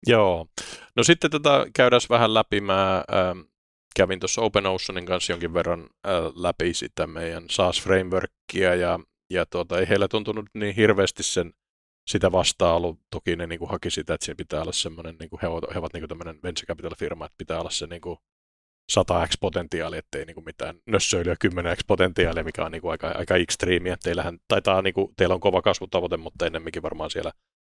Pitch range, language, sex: 85-100 Hz, Finnish, male